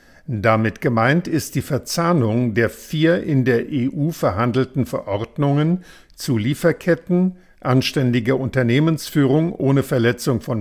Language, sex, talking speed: German, male, 105 wpm